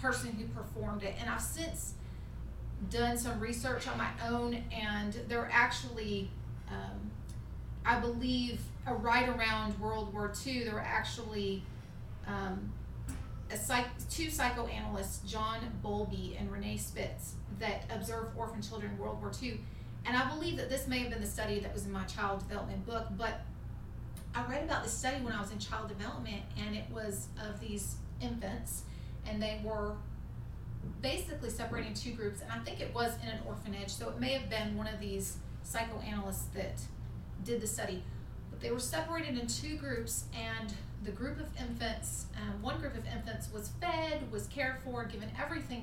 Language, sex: English, female